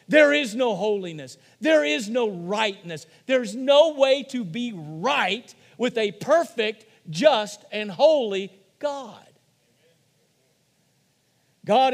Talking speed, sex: 110 wpm, male